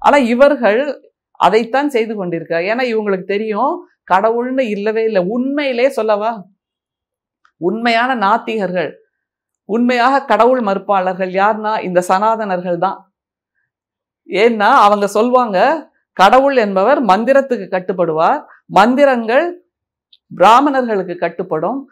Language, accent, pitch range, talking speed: Tamil, native, 190-255 Hz, 90 wpm